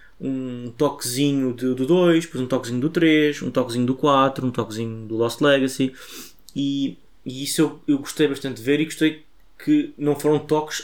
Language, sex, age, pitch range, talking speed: Portuguese, male, 20-39, 110-145 Hz, 185 wpm